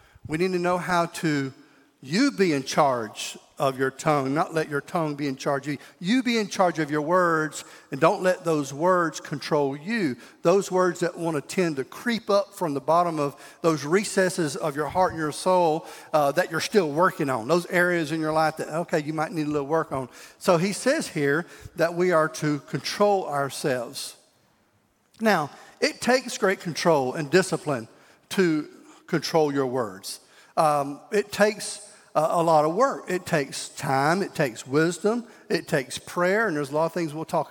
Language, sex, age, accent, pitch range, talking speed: English, male, 50-69, American, 150-205 Hz, 195 wpm